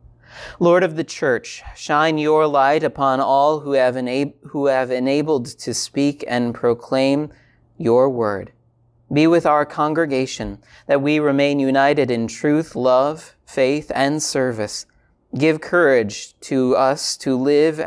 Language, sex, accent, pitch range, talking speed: English, male, American, 120-145 Hz, 130 wpm